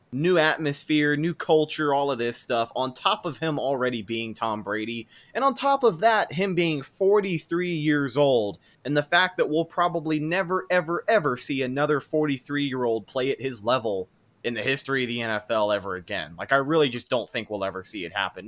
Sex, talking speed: male, 205 wpm